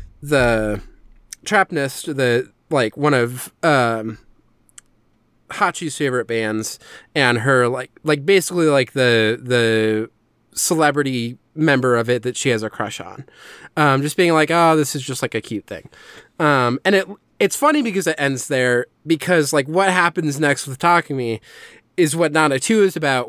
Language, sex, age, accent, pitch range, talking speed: English, male, 20-39, American, 120-150 Hz, 165 wpm